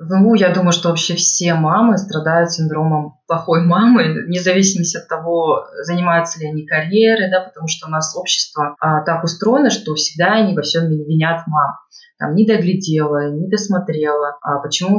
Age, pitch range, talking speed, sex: 20-39, 155-190 Hz, 160 wpm, female